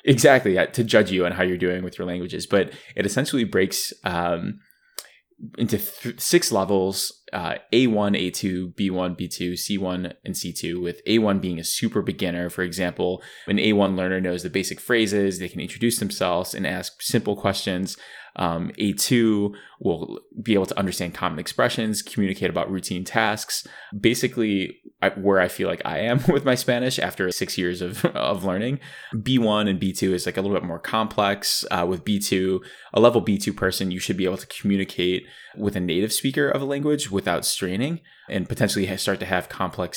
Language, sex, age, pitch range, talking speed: English, male, 20-39, 90-110 Hz, 180 wpm